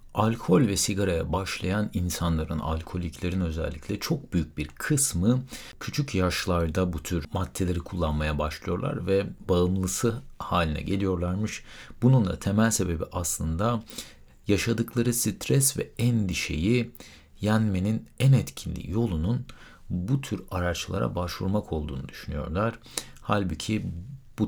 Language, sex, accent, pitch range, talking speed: Turkish, male, native, 85-105 Hz, 105 wpm